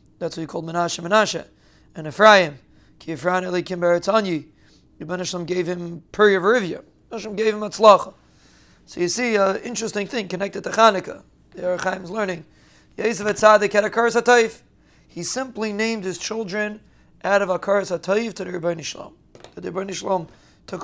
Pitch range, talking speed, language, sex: 175-205 Hz, 145 wpm, English, male